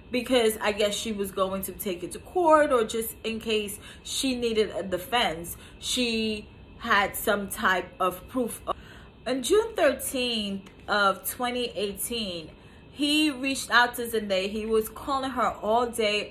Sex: female